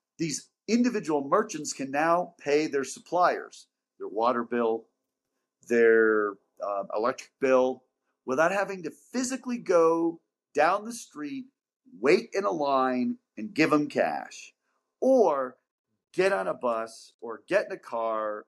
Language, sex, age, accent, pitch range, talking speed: English, male, 40-59, American, 125-195 Hz, 135 wpm